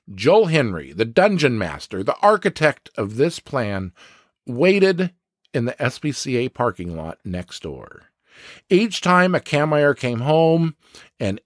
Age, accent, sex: 50-69, American, male